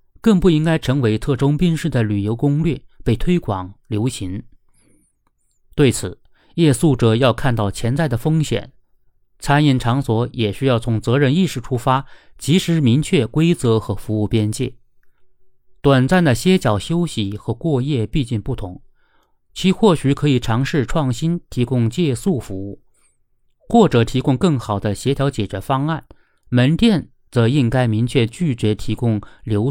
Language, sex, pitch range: Chinese, male, 115-150 Hz